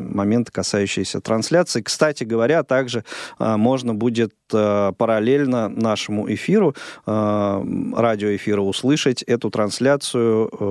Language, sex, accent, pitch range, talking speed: Russian, male, native, 105-135 Hz, 85 wpm